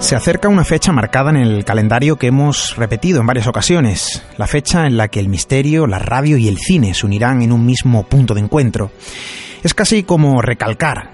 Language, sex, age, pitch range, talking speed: Spanish, male, 30-49, 100-135 Hz, 205 wpm